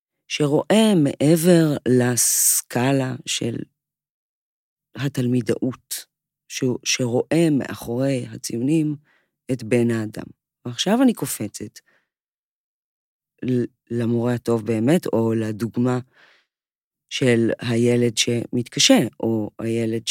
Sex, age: female, 40-59